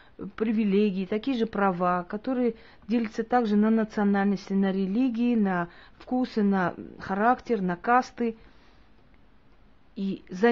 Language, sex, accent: Russian, female, native